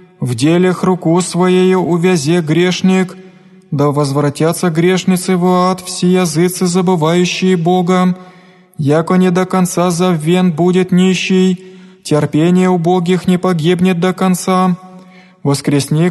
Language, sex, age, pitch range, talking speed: Greek, male, 20-39, 170-180 Hz, 110 wpm